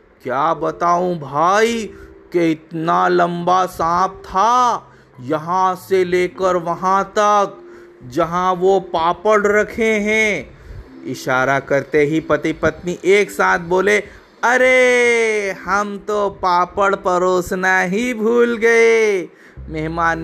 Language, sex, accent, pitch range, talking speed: Hindi, male, native, 170-225 Hz, 105 wpm